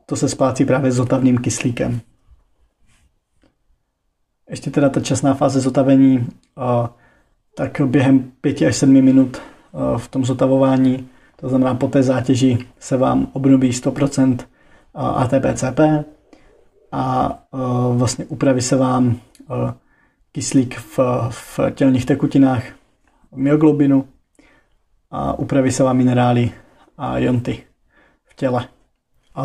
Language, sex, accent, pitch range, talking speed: Czech, male, native, 125-140 Hz, 110 wpm